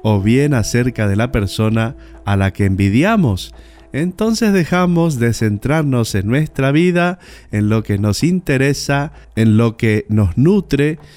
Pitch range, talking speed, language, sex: 105-145 Hz, 145 wpm, Spanish, male